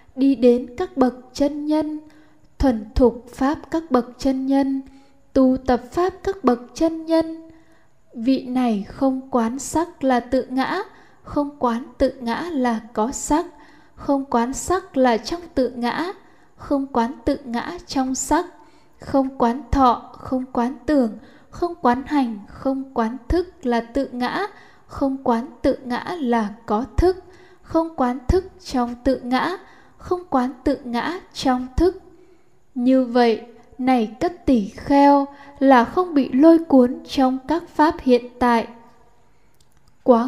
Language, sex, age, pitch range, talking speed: Vietnamese, female, 10-29, 245-305 Hz, 145 wpm